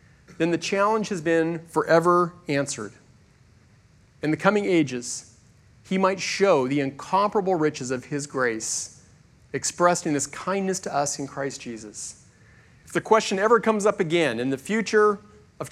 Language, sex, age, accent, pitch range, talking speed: English, male, 40-59, American, 145-200 Hz, 155 wpm